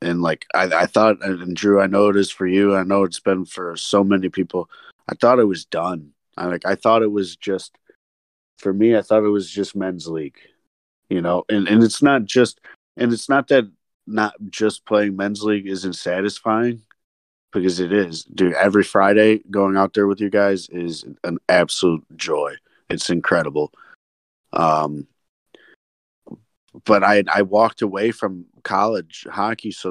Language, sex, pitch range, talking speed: English, male, 85-100 Hz, 185 wpm